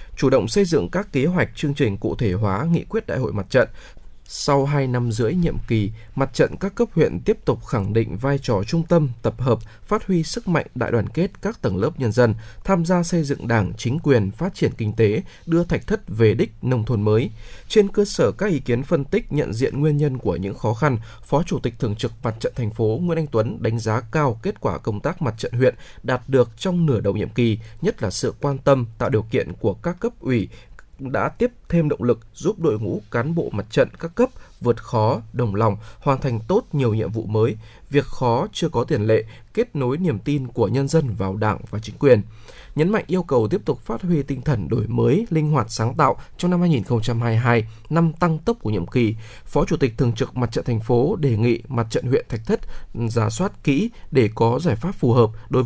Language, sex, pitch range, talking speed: Vietnamese, male, 115-155 Hz, 240 wpm